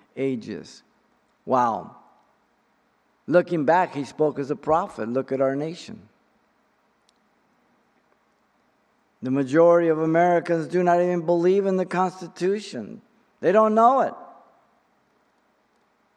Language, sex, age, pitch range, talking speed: English, male, 50-69, 130-160 Hz, 105 wpm